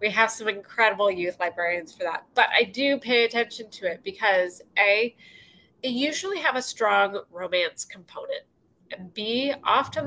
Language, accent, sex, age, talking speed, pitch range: English, American, female, 30-49, 160 wpm, 180-245 Hz